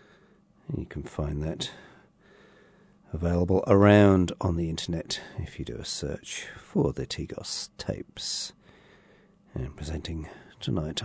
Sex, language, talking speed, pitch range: male, English, 120 wpm, 75-100 Hz